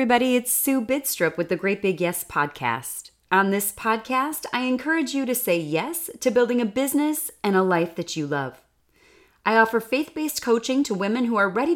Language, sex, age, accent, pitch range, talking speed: English, female, 30-49, American, 175-255 Hz, 195 wpm